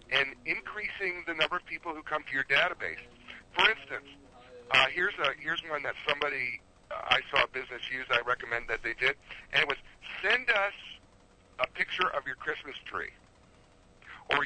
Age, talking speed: 60-79, 180 wpm